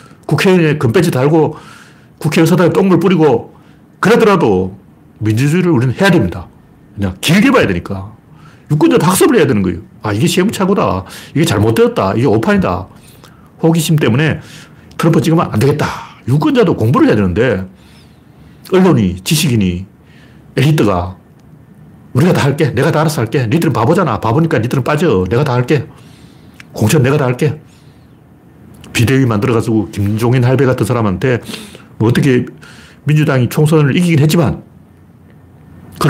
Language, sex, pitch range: Korean, male, 120-175 Hz